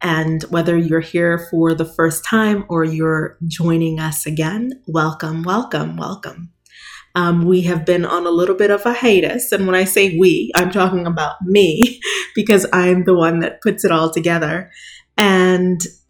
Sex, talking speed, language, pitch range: female, 170 wpm, English, 165-190 Hz